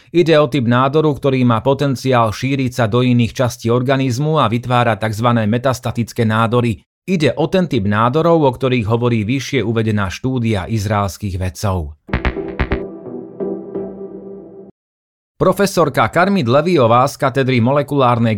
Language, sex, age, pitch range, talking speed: Slovak, male, 30-49, 115-135 Hz, 120 wpm